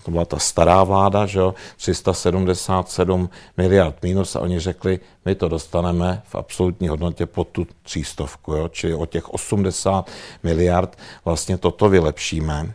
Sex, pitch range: male, 85-100 Hz